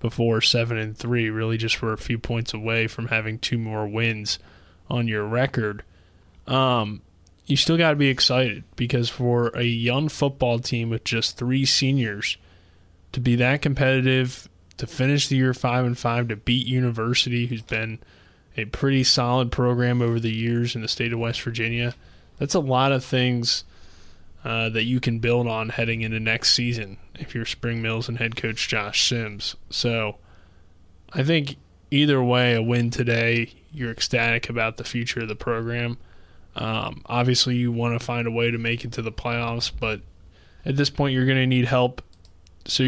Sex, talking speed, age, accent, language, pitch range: male, 180 wpm, 20-39, American, English, 110-125 Hz